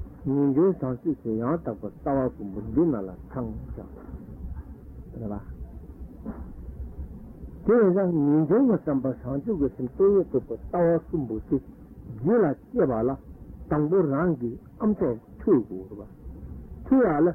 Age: 60-79